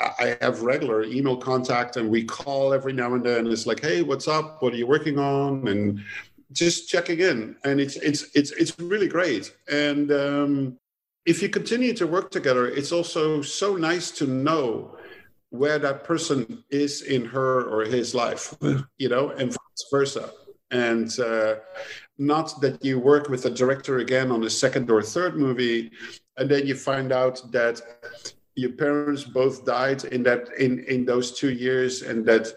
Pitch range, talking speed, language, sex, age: 120-150 Hz, 180 wpm, English, male, 50-69